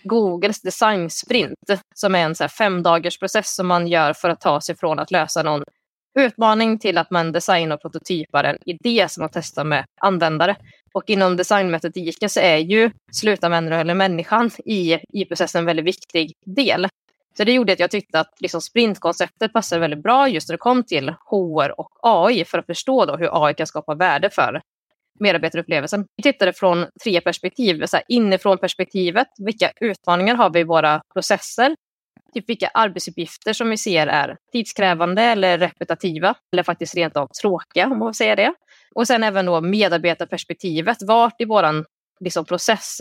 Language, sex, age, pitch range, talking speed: Swedish, female, 20-39, 170-215 Hz, 180 wpm